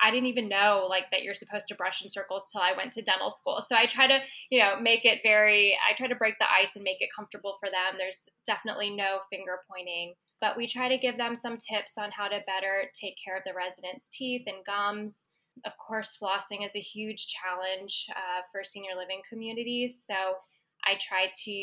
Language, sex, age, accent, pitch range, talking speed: English, female, 10-29, American, 190-225 Hz, 220 wpm